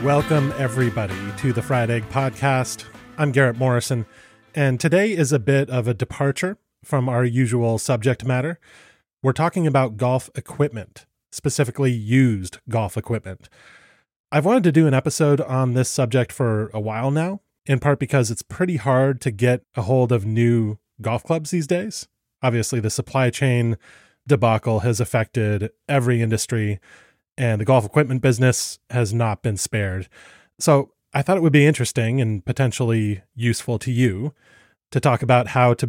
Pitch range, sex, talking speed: 115-140 Hz, male, 160 wpm